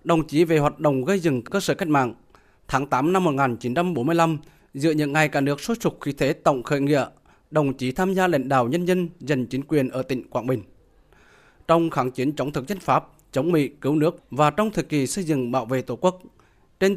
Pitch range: 135-175 Hz